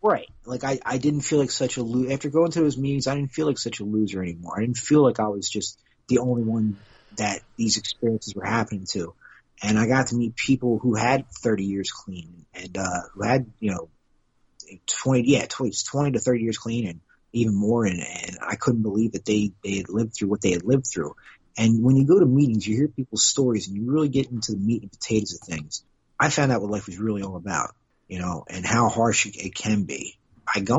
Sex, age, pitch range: male, 30-49, 100-135 Hz